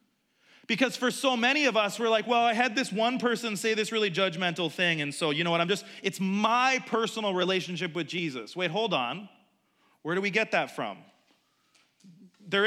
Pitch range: 165-225 Hz